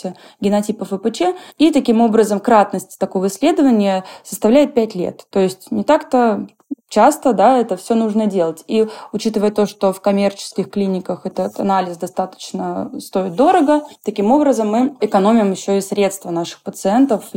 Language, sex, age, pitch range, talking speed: Russian, female, 20-39, 185-230 Hz, 145 wpm